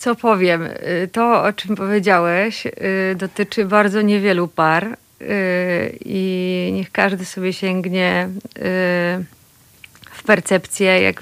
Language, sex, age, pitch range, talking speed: Polish, female, 30-49, 180-245 Hz, 95 wpm